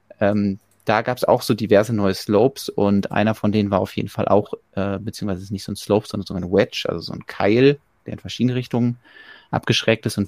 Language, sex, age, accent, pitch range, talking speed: German, male, 30-49, German, 100-115 Hz, 240 wpm